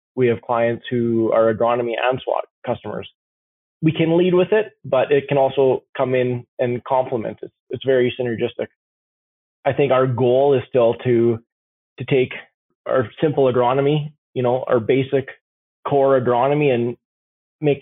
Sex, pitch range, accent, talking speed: male, 115-135 Hz, American, 155 wpm